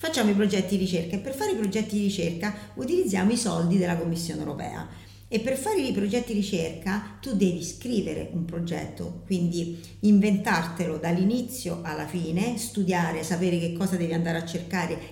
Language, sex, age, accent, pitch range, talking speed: Italian, female, 50-69, native, 170-225 Hz, 170 wpm